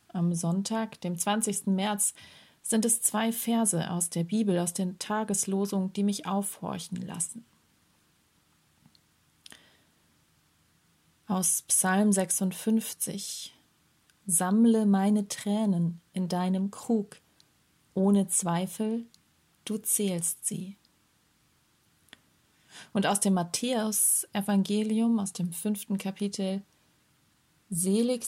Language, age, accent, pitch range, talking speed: German, 30-49, German, 185-210 Hz, 90 wpm